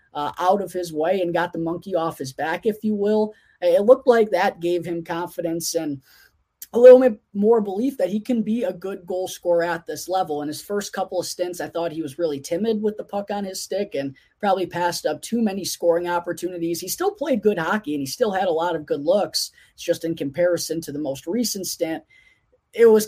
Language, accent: English, American